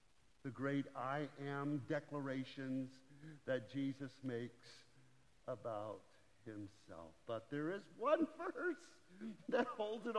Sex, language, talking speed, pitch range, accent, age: male, English, 105 wpm, 135-175 Hz, American, 50-69